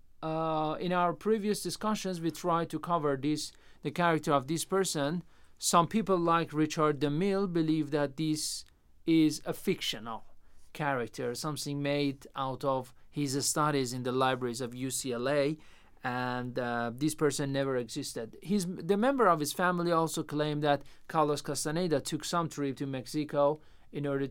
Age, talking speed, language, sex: 40-59, 155 wpm, Persian, male